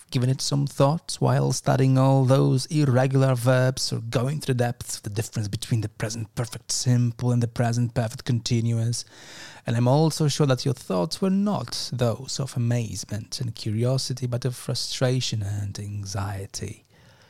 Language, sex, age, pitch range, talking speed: English, male, 30-49, 110-135 Hz, 165 wpm